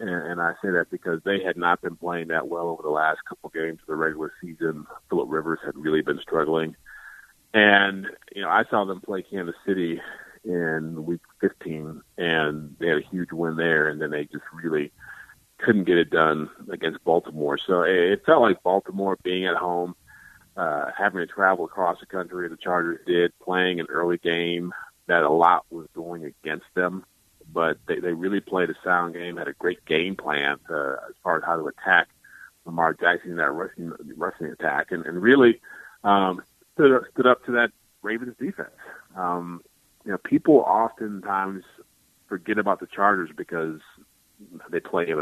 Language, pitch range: English, 80-95 Hz